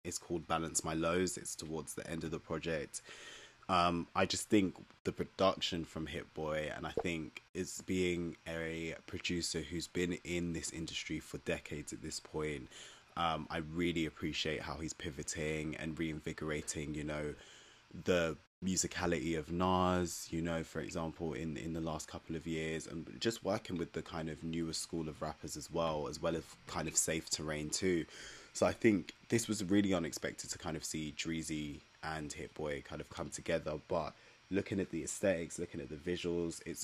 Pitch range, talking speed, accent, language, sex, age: 80-90 Hz, 185 wpm, British, English, male, 20-39